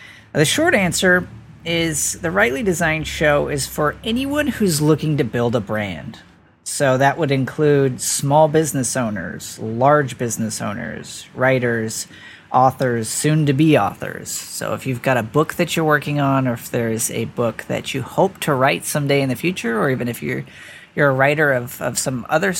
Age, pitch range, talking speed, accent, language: 40-59, 125-155 Hz, 175 wpm, American, English